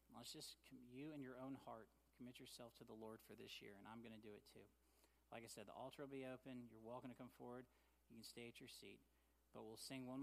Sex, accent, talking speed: male, American, 265 wpm